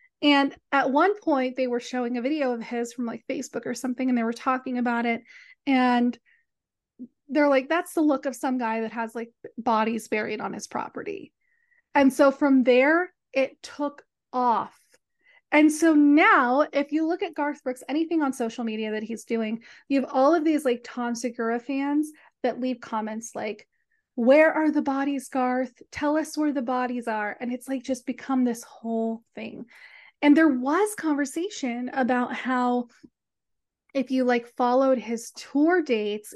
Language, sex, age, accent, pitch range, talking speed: English, female, 30-49, American, 235-295 Hz, 175 wpm